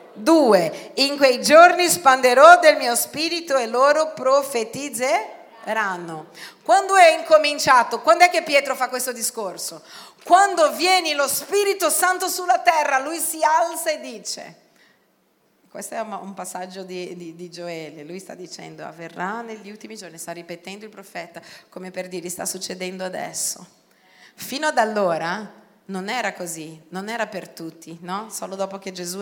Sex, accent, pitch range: female, native, 185-280 Hz